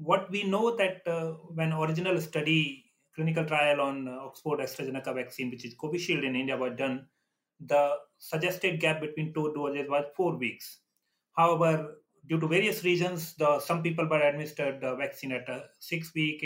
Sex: male